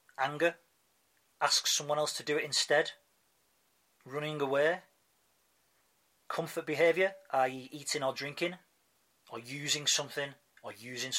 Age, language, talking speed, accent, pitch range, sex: 30-49, English, 115 wpm, British, 115-160 Hz, male